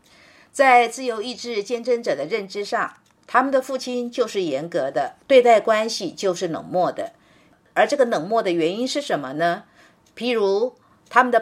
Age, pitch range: 50-69, 190-245 Hz